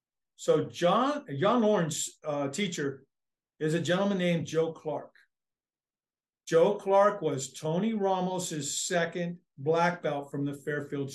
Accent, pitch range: American, 160-195 Hz